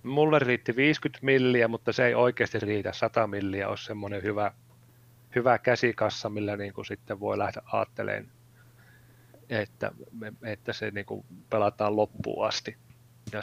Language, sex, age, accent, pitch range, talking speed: Finnish, male, 30-49, native, 110-130 Hz, 140 wpm